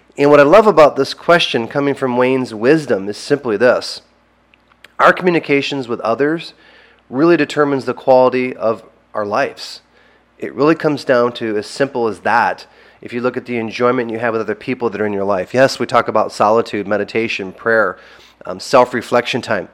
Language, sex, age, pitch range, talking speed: English, male, 30-49, 120-145 Hz, 180 wpm